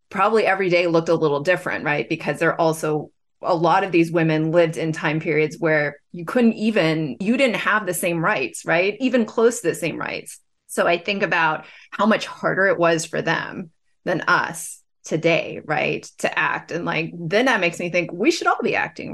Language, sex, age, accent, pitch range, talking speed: English, female, 30-49, American, 160-205 Hz, 210 wpm